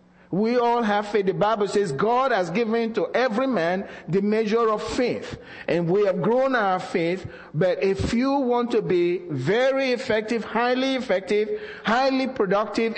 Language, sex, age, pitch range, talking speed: English, male, 50-69, 165-235 Hz, 160 wpm